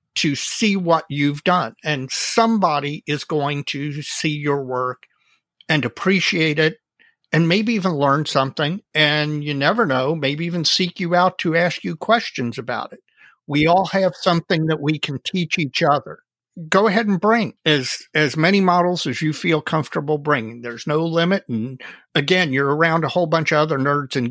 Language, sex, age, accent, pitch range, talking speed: English, male, 50-69, American, 140-180 Hz, 180 wpm